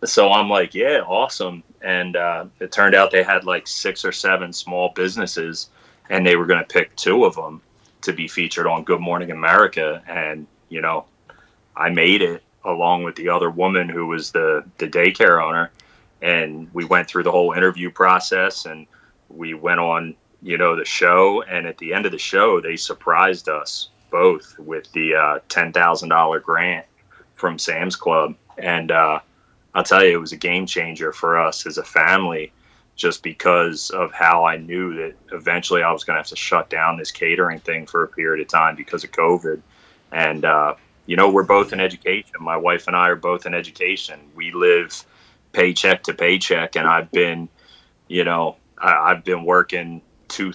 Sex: male